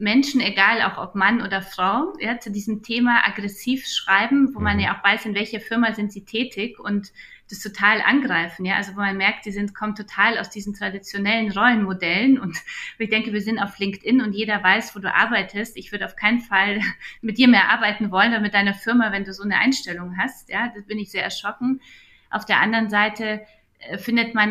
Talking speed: 210 wpm